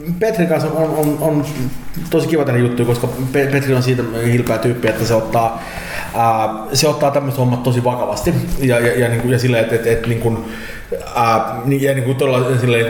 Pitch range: 105-125 Hz